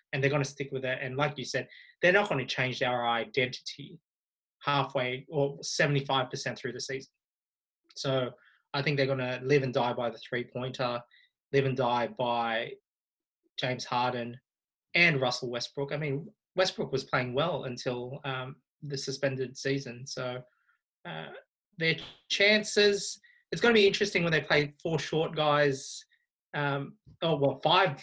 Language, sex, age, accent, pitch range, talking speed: English, male, 20-39, Australian, 130-165 Hz, 160 wpm